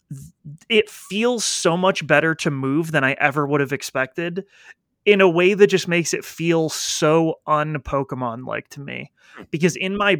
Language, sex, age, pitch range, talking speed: English, male, 20-39, 130-155 Hz, 175 wpm